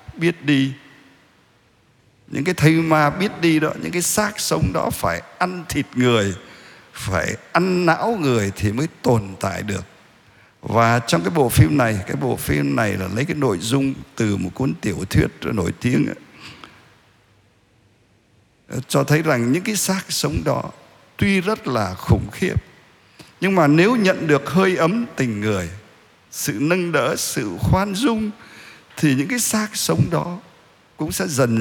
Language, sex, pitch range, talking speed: Vietnamese, male, 115-170 Hz, 165 wpm